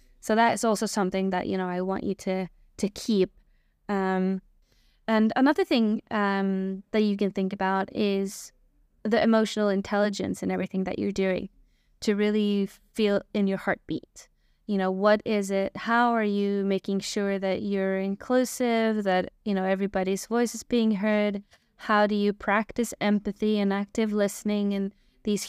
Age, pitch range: 20-39, 195-225 Hz